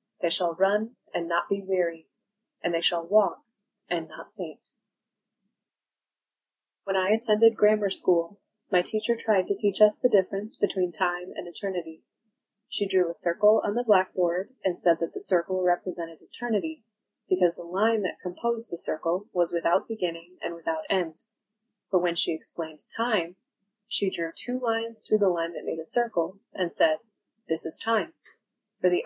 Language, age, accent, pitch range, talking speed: English, 20-39, American, 175-215 Hz, 165 wpm